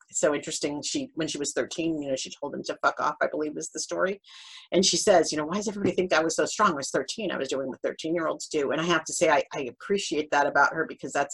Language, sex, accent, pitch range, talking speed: English, female, American, 150-195 Hz, 300 wpm